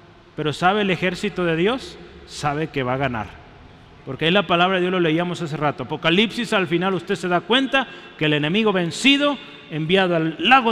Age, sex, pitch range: 40-59, male, 160-215 Hz